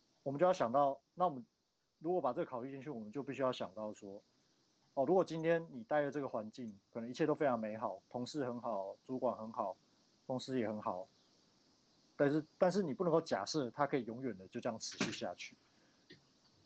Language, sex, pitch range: Chinese, male, 125-160 Hz